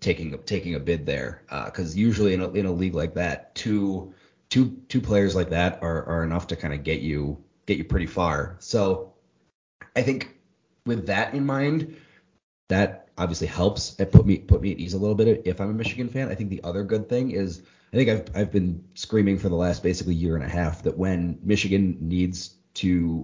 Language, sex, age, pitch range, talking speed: English, male, 30-49, 85-100 Hz, 215 wpm